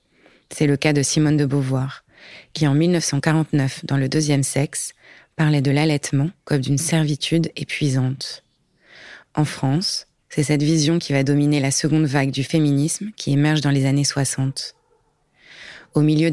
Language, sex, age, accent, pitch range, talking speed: French, female, 30-49, French, 140-155 Hz, 155 wpm